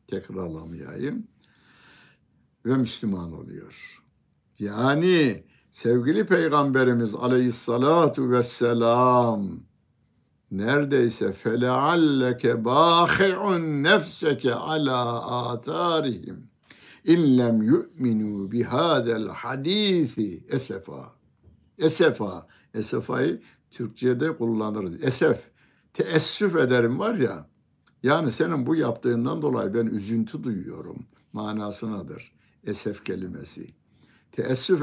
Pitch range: 115-160 Hz